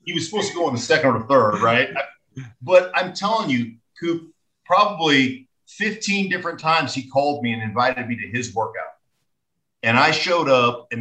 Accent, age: American, 50-69